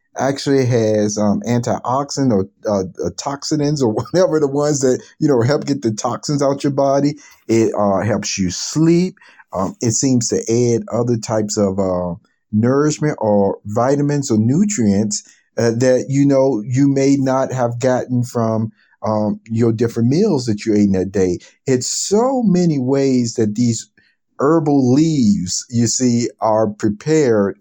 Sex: male